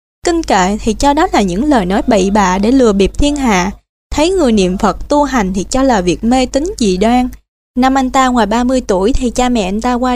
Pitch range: 215-290 Hz